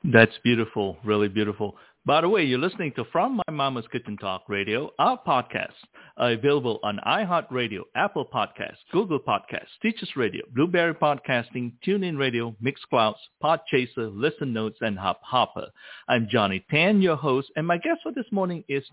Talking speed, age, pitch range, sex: 160 wpm, 50-69, 110-155 Hz, male